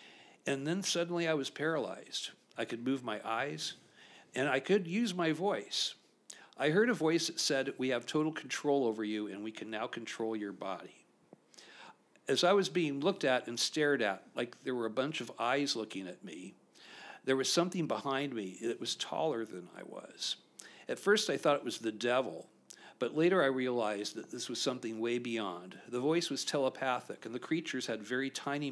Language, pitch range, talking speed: English, 120-155 Hz, 195 wpm